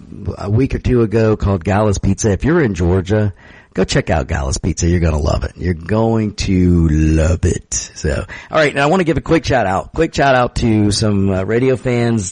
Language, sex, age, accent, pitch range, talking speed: English, male, 50-69, American, 90-115 Hz, 225 wpm